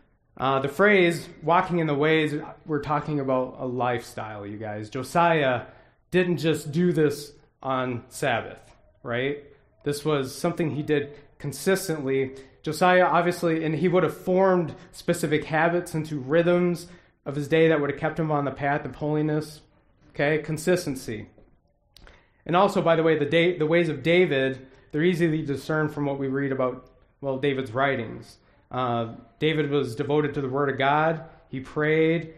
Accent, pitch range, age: American, 130-160 Hz, 30-49